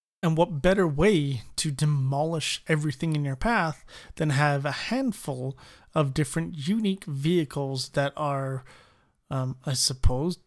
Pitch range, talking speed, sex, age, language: 140-170 Hz, 130 wpm, male, 30-49, English